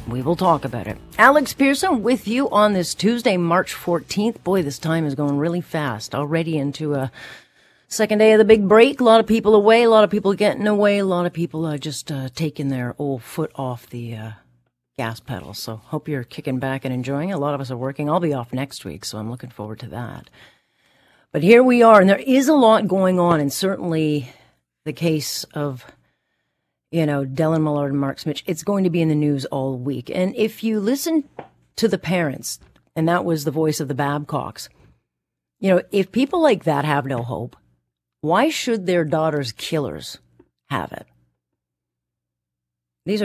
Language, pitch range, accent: English, 135-185 Hz, American